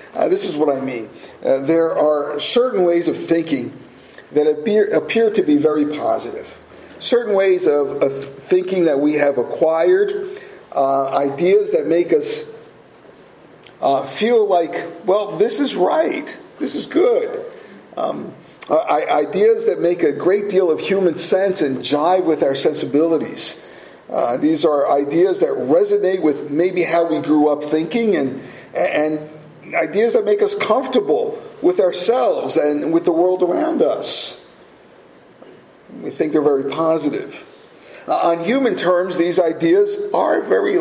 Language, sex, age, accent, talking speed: English, male, 50-69, American, 145 wpm